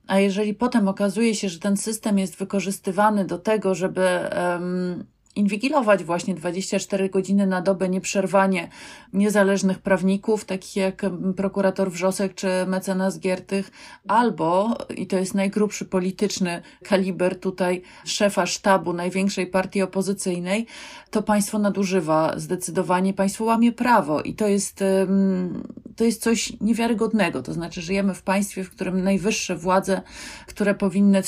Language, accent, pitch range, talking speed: Polish, native, 185-210 Hz, 130 wpm